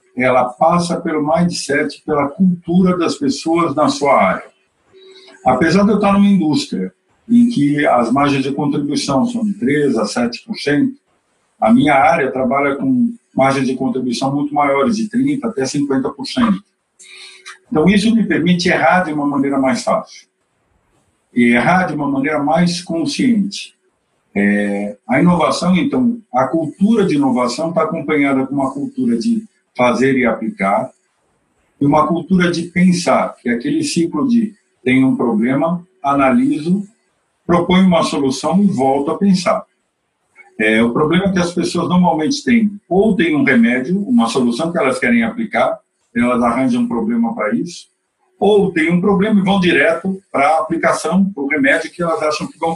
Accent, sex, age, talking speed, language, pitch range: Brazilian, male, 50-69, 160 wpm, Portuguese, 145-215 Hz